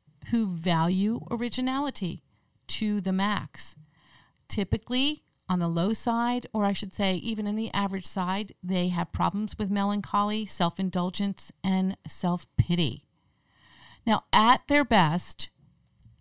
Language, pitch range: English, 165-210 Hz